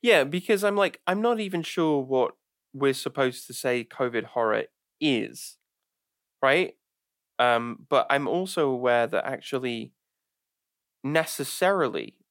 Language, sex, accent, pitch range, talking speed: English, male, British, 120-170 Hz, 120 wpm